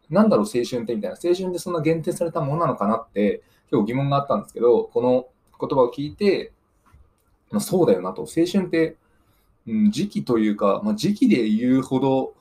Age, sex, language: 20-39, male, Japanese